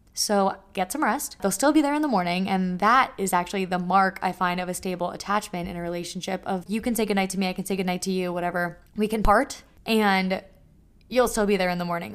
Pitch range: 180-210 Hz